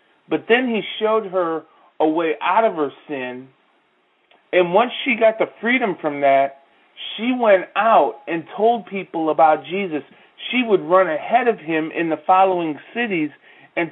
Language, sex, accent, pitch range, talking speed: English, male, American, 150-190 Hz, 165 wpm